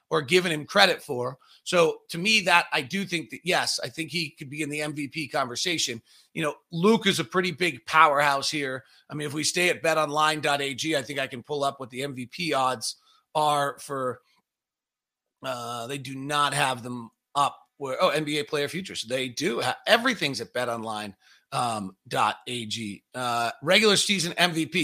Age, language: 30-49, English